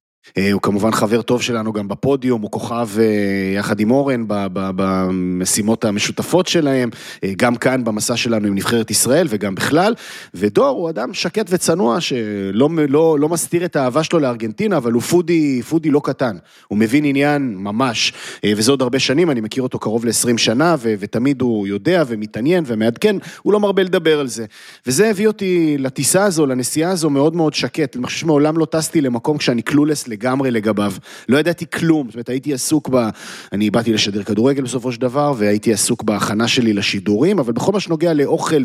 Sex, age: male, 30-49